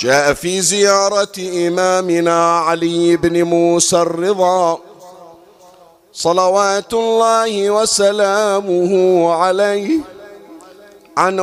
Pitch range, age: 180-220 Hz, 50-69